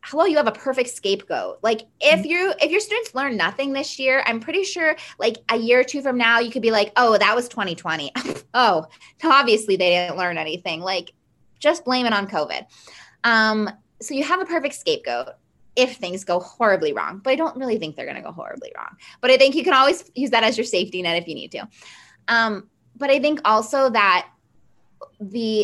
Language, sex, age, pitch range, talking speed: English, female, 20-39, 185-255 Hz, 215 wpm